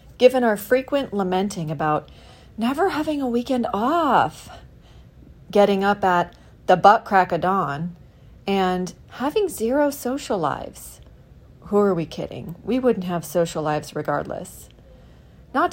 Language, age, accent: English, 40-59, American